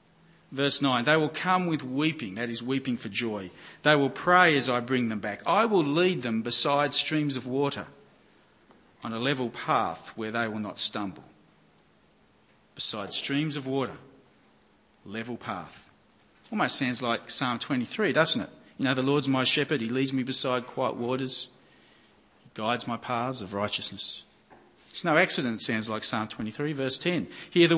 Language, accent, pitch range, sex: English, Australian, 120-150 Hz, male